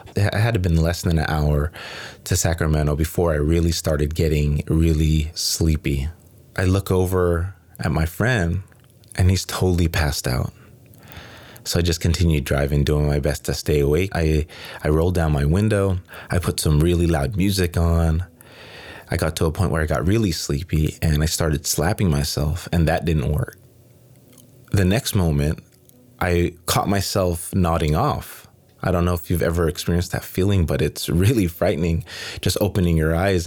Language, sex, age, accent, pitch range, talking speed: English, male, 20-39, American, 80-95 Hz, 170 wpm